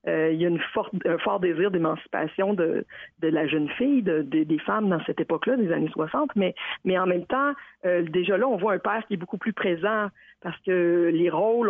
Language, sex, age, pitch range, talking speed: French, female, 50-69, 180-220 Hz, 235 wpm